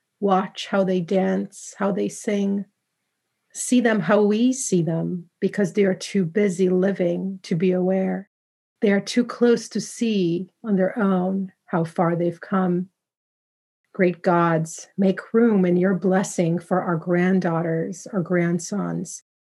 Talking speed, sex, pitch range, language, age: 145 wpm, female, 175-195 Hz, English, 40-59